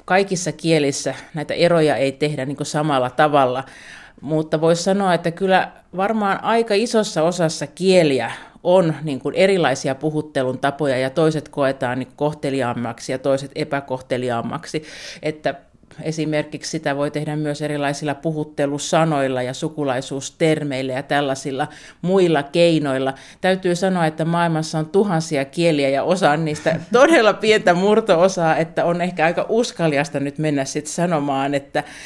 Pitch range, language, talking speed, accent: 145-170 Hz, Finnish, 125 wpm, native